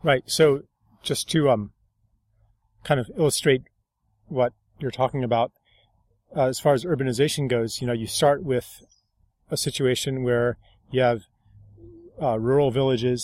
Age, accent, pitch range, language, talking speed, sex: 30-49, American, 120-140 Hz, English, 140 wpm, male